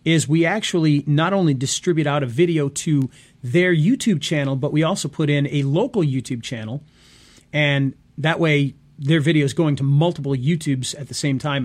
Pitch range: 135-165 Hz